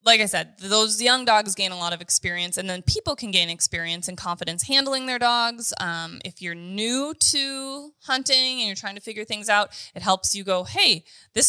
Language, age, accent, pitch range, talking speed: English, 20-39, American, 175-230 Hz, 215 wpm